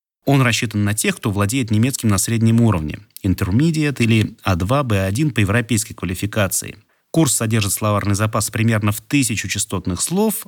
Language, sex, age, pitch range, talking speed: Russian, male, 30-49, 100-130 Hz, 145 wpm